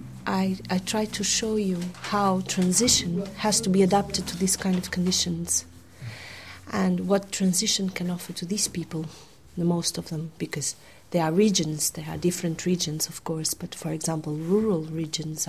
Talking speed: 170 wpm